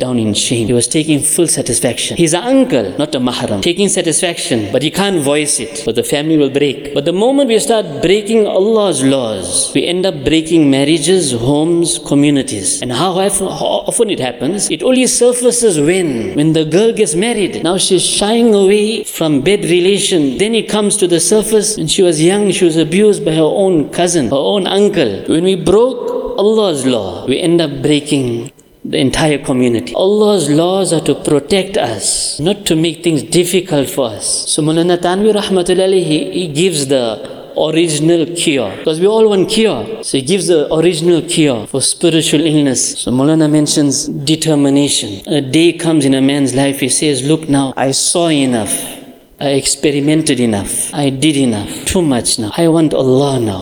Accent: Indian